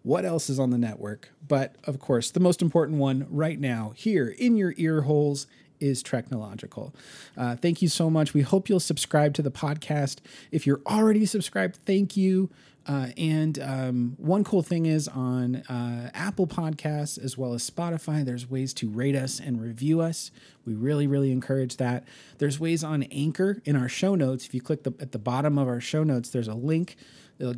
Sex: male